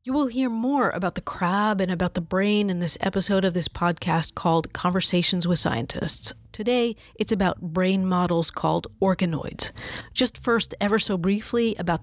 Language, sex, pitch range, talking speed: English, female, 170-215 Hz, 170 wpm